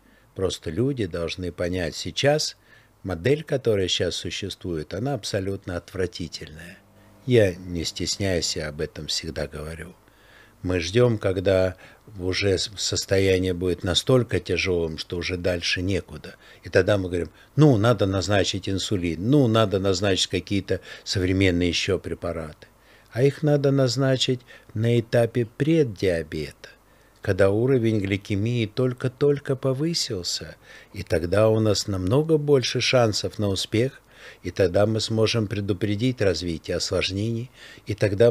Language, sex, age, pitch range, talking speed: Russian, male, 60-79, 95-115 Hz, 120 wpm